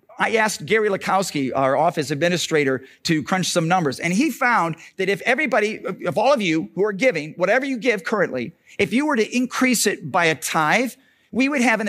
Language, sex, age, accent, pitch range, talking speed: English, male, 50-69, American, 170-240 Hz, 205 wpm